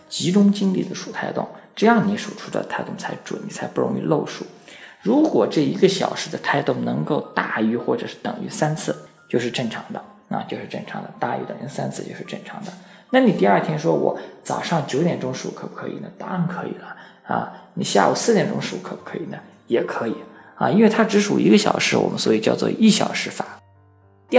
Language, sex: Chinese, male